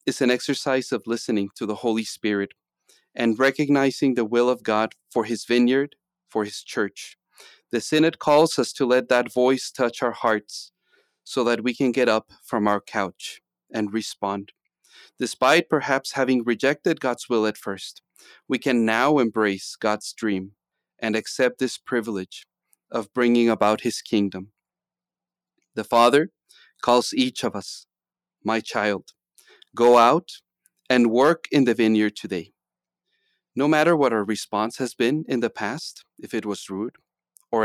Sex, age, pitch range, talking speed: male, 40-59, 110-130 Hz, 155 wpm